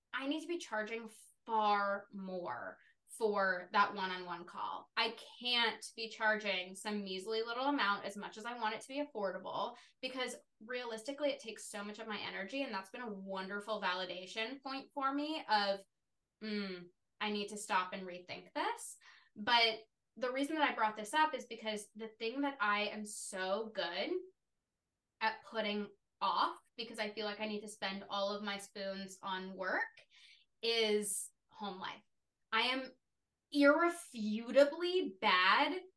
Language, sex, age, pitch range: English, female, 20-39, 200-235 Hz